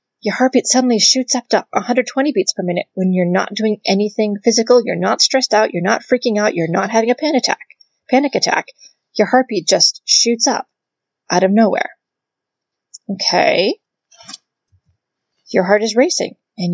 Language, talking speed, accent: English, 165 wpm, American